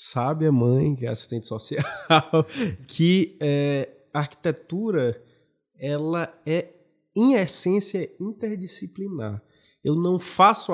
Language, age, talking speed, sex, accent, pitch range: Portuguese, 20-39, 95 wpm, male, Brazilian, 125-170 Hz